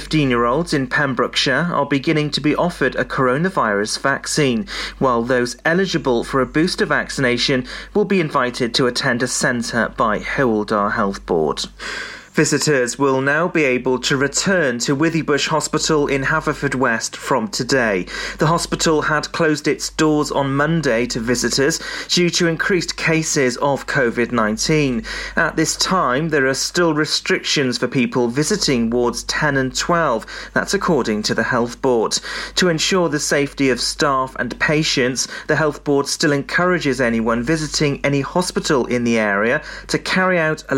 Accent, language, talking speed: British, English, 155 wpm